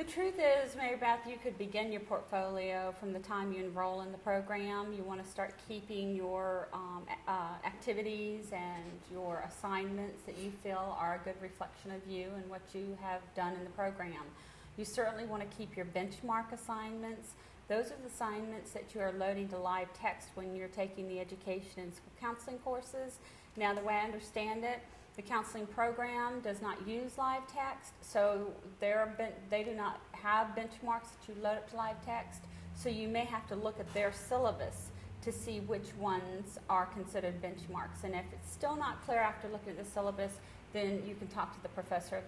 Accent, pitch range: American, 190-235 Hz